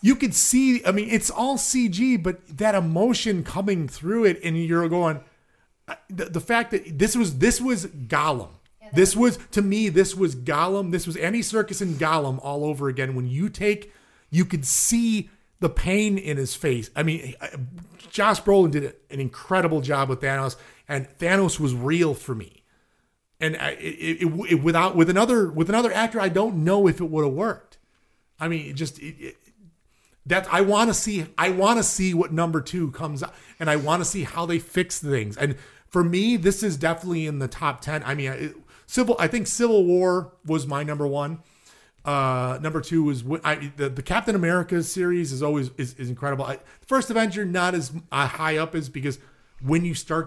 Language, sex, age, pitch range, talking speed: English, male, 30-49, 145-195 Hz, 200 wpm